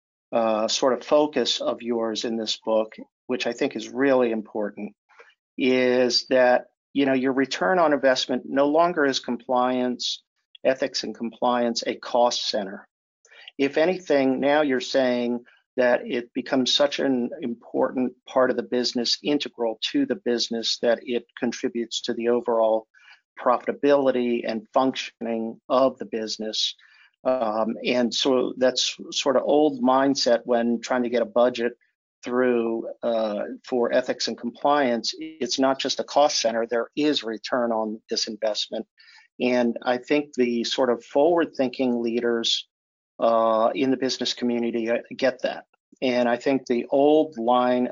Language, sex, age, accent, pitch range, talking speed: English, male, 50-69, American, 115-130 Hz, 150 wpm